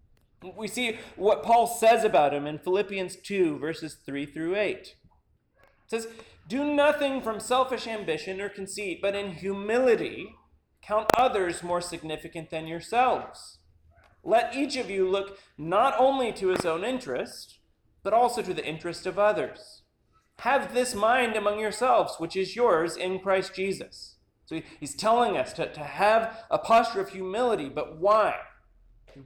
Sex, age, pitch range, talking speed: male, 40-59, 165-230 Hz, 155 wpm